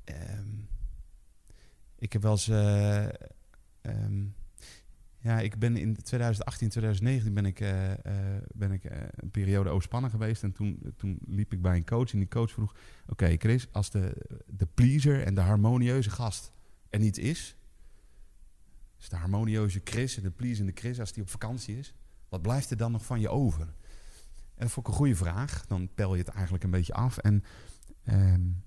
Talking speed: 185 wpm